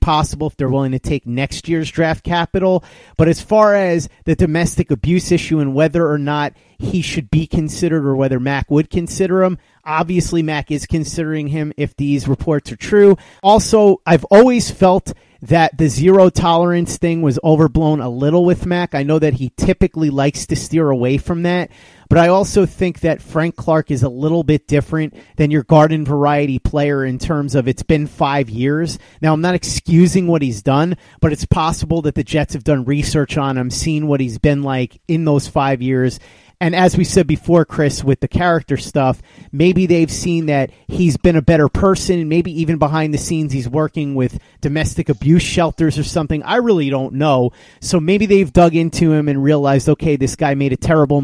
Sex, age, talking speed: male, 30-49, 200 wpm